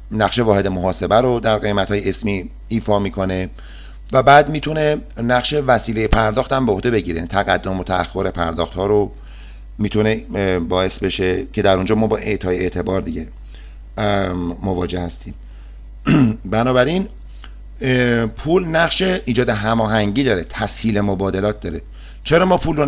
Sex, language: male, Persian